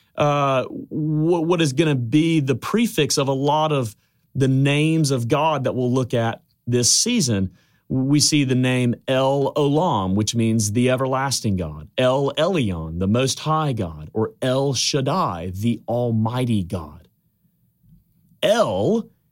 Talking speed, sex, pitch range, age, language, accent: 145 wpm, male, 110-155 Hz, 30-49, English, American